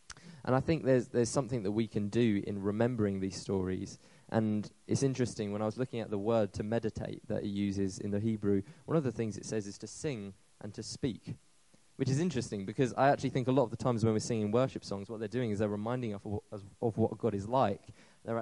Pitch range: 105-125 Hz